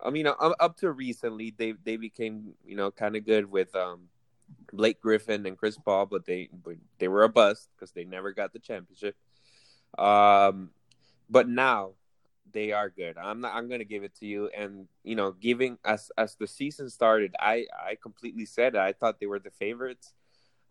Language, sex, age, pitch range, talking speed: English, male, 20-39, 95-115 Hz, 195 wpm